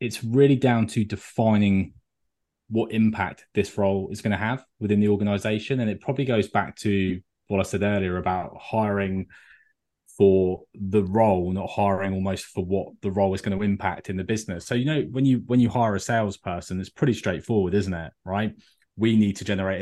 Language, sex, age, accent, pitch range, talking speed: English, male, 20-39, British, 95-110 Hz, 195 wpm